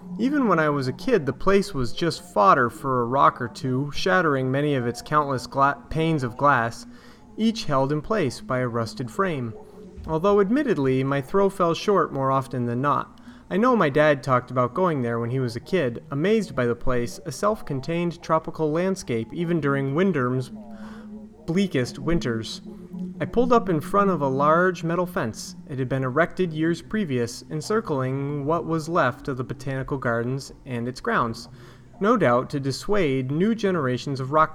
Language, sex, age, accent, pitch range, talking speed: English, male, 30-49, American, 125-185 Hz, 180 wpm